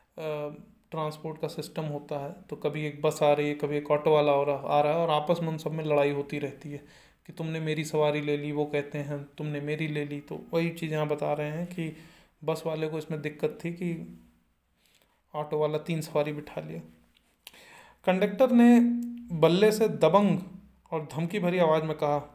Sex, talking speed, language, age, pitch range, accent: male, 200 wpm, Hindi, 30-49, 150-190 Hz, native